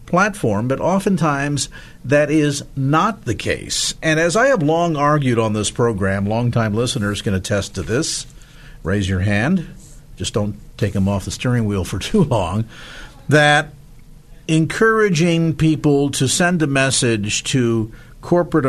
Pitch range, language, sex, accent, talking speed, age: 105-150 Hz, English, male, American, 150 wpm, 50-69